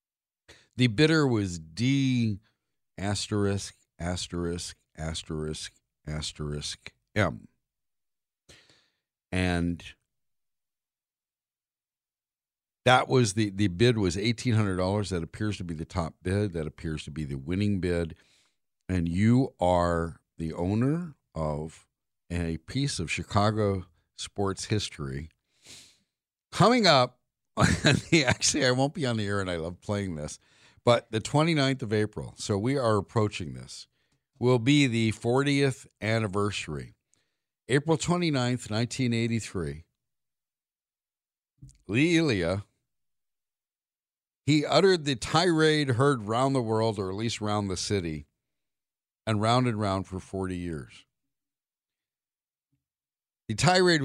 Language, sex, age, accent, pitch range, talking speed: English, male, 50-69, American, 85-125 Hz, 110 wpm